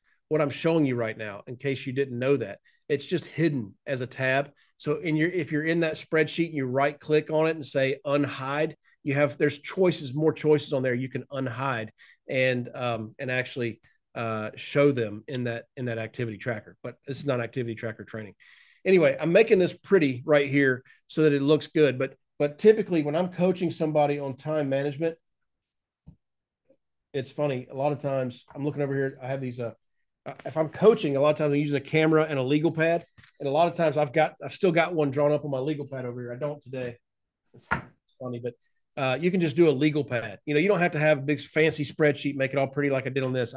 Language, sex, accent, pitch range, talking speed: English, male, American, 130-155 Hz, 235 wpm